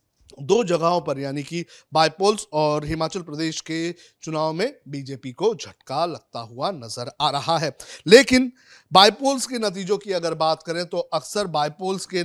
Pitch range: 150-185 Hz